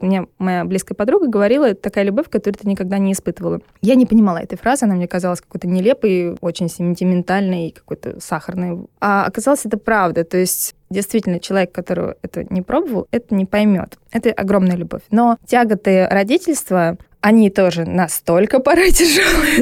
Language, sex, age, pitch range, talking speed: Russian, female, 20-39, 190-235 Hz, 165 wpm